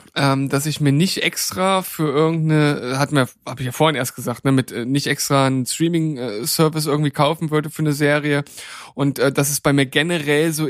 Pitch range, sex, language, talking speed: 145-175 Hz, male, German, 200 wpm